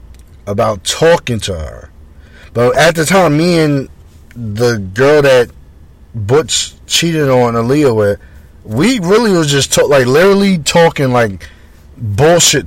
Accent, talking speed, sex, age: American, 135 wpm, male, 30-49